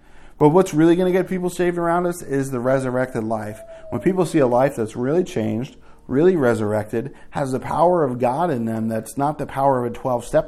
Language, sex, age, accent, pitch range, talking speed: English, male, 40-59, American, 115-150 Hz, 220 wpm